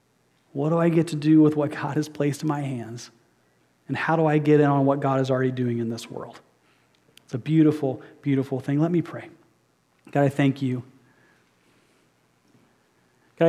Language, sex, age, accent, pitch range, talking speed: English, male, 30-49, American, 135-160 Hz, 185 wpm